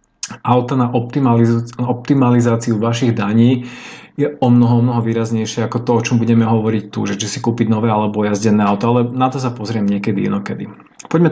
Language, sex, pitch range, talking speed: Slovak, male, 115-130 Hz, 175 wpm